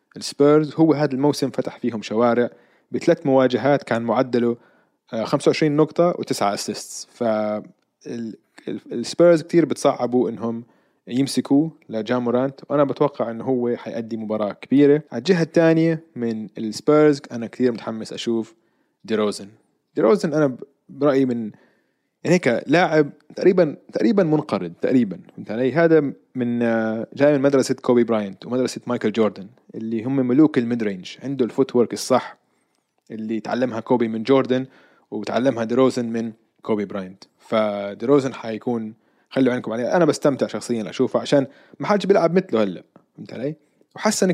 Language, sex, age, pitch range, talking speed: Arabic, male, 20-39, 115-150 Hz, 130 wpm